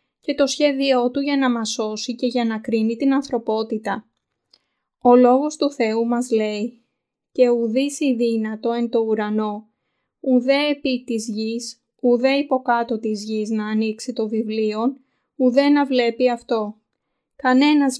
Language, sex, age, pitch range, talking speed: Greek, female, 20-39, 225-265 Hz, 145 wpm